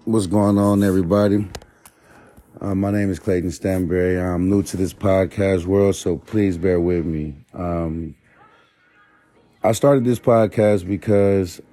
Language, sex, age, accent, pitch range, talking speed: English, male, 30-49, American, 90-100 Hz, 140 wpm